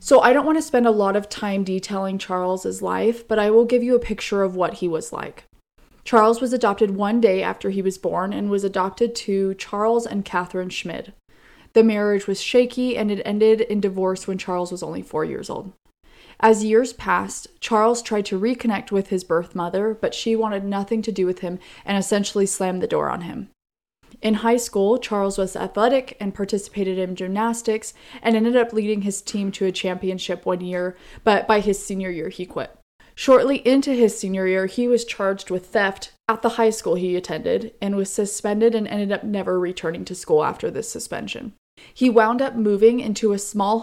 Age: 20-39